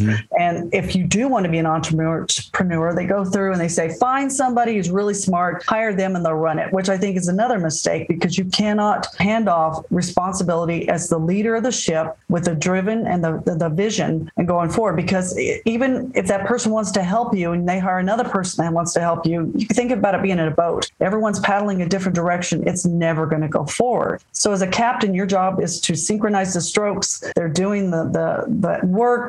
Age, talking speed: 40-59, 225 wpm